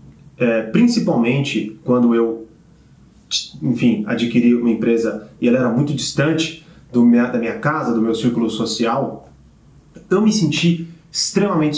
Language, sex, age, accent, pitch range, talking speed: Portuguese, male, 30-49, Brazilian, 115-165 Hz, 130 wpm